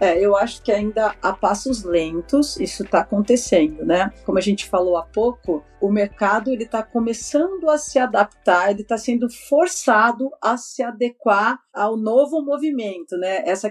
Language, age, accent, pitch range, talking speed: Portuguese, 40-59, Brazilian, 210-265 Hz, 160 wpm